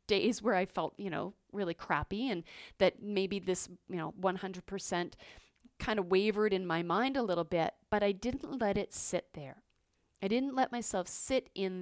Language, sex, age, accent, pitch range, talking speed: English, female, 30-49, American, 185-240 Hz, 190 wpm